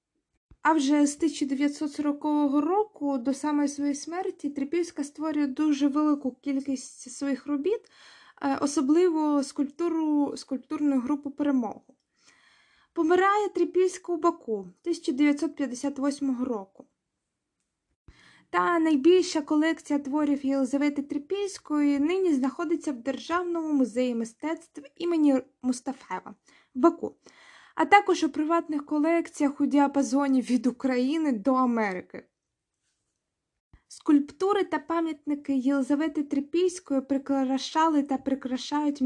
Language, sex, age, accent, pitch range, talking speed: Ukrainian, female, 20-39, native, 265-315 Hz, 95 wpm